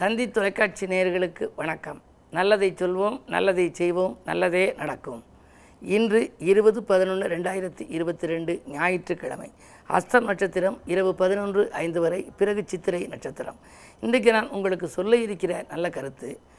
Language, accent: Tamil, native